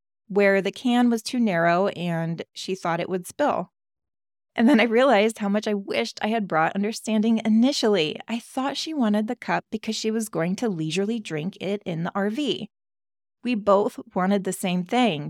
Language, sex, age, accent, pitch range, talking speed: English, female, 20-39, American, 175-220 Hz, 190 wpm